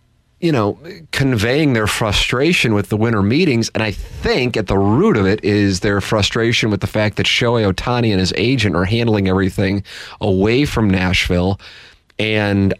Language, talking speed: English, 170 wpm